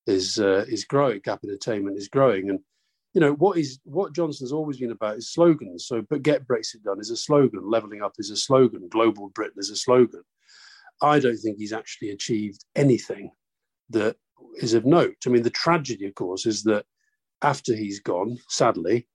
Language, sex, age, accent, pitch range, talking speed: English, male, 40-59, British, 110-160 Hz, 190 wpm